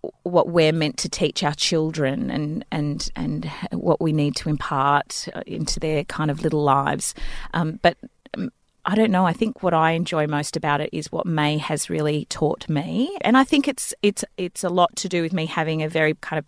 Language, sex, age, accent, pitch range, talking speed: English, female, 30-49, Australian, 155-190 Hz, 215 wpm